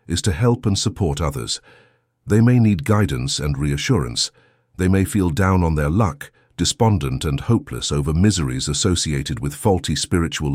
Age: 50-69